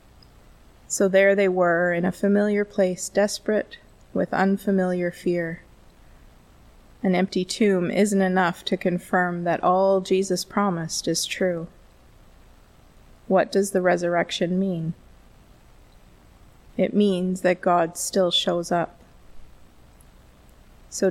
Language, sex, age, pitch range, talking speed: English, female, 20-39, 170-195 Hz, 110 wpm